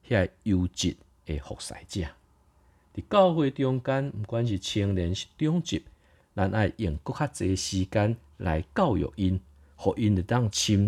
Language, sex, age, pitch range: Chinese, male, 50-69, 80-110 Hz